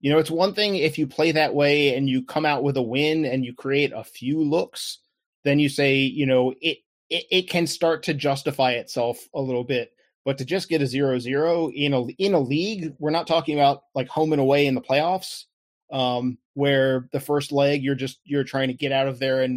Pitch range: 135-155 Hz